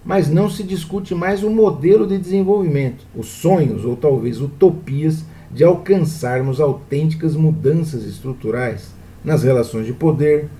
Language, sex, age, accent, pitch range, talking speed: Portuguese, male, 50-69, Brazilian, 125-160 Hz, 130 wpm